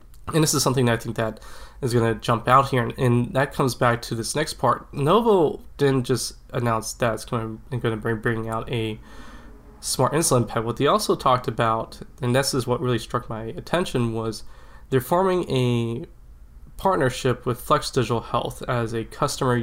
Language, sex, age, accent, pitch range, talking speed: English, male, 20-39, American, 115-130 Hz, 200 wpm